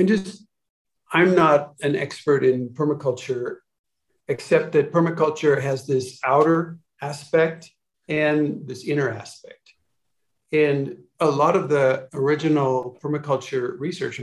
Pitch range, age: 130-160 Hz, 50-69